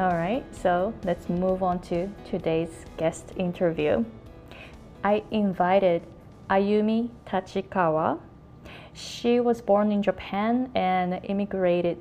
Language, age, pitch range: Japanese, 20-39, 175-220 Hz